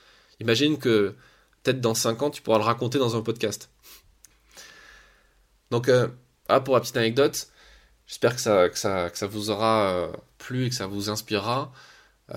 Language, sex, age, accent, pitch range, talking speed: French, male, 20-39, French, 110-130 Hz, 175 wpm